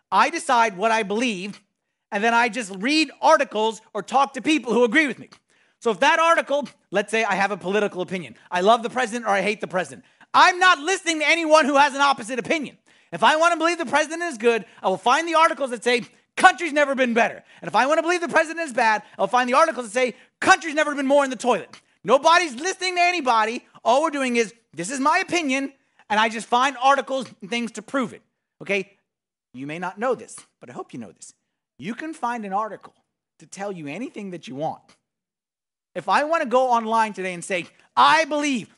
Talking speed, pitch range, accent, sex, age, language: 230 wpm, 220-310 Hz, American, male, 30-49, English